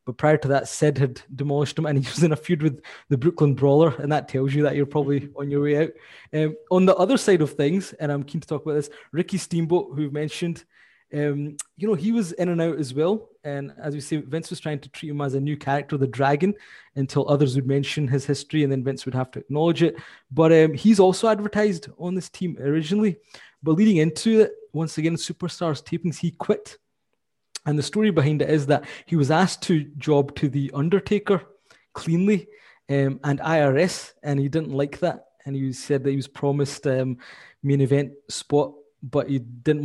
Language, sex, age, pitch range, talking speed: English, male, 20-39, 140-175 Hz, 215 wpm